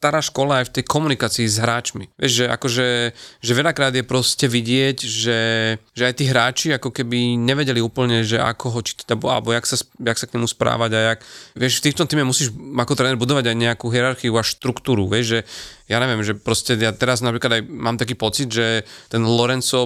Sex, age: male, 30-49